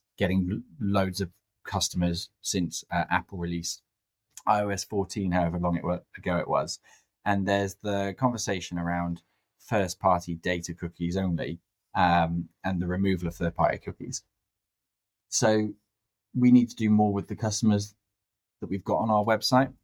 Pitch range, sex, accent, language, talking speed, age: 90-105 Hz, male, British, English, 145 wpm, 20-39